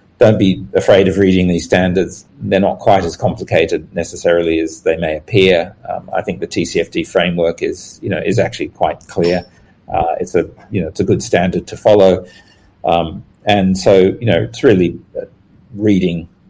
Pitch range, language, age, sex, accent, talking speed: 85-105 Hz, English, 40-59, male, Australian, 180 wpm